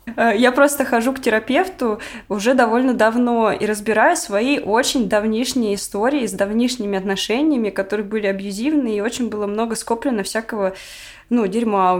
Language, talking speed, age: Russian, 145 wpm, 20-39